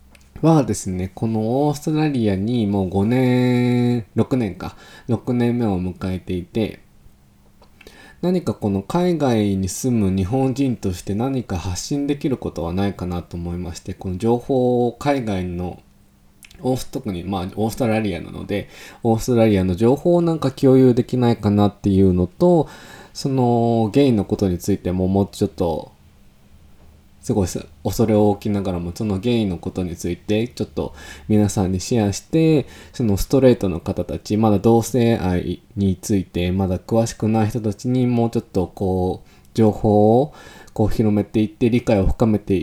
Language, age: Japanese, 20-39